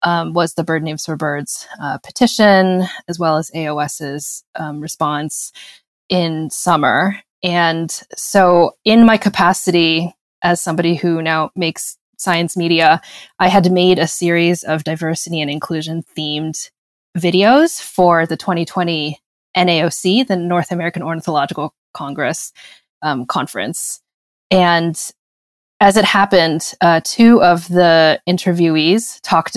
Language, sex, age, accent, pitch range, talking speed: English, female, 20-39, American, 160-185 Hz, 120 wpm